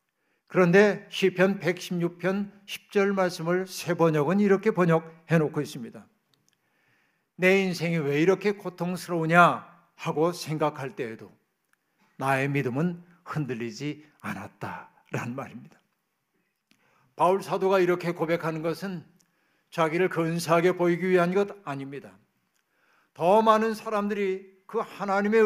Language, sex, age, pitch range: Korean, male, 60-79, 165-200 Hz